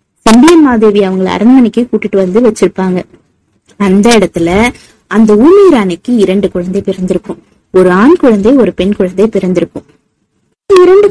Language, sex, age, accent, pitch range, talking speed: Tamil, female, 20-39, native, 195-260 Hz, 75 wpm